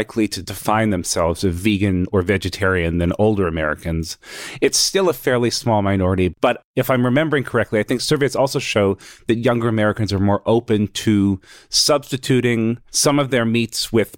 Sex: male